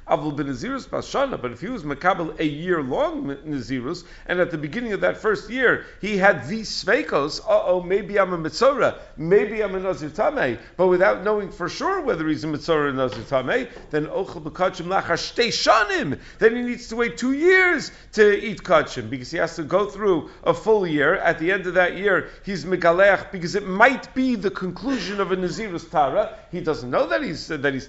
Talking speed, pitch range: 190 wpm, 170-215 Hz